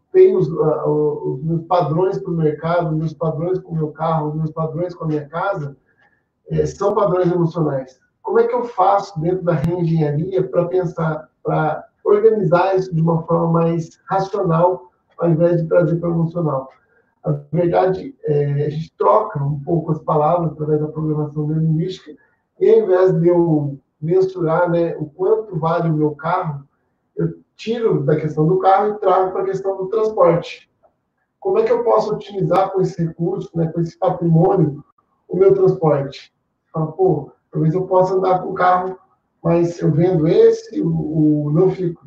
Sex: male